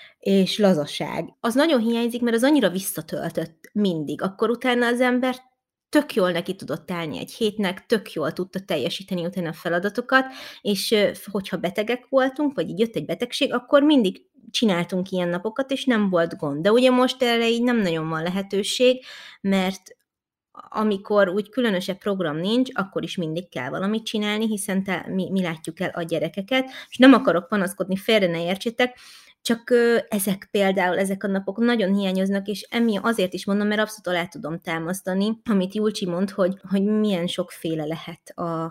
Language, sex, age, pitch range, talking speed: Hungarian, female, 20-39, 175-230 Hz, 170 wpm